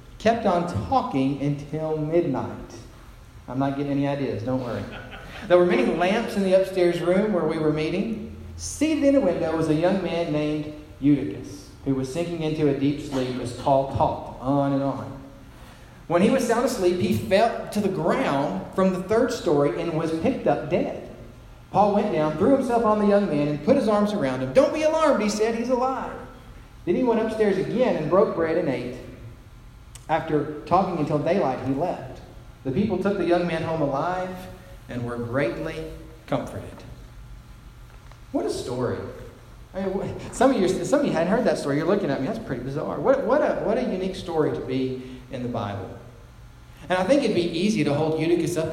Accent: American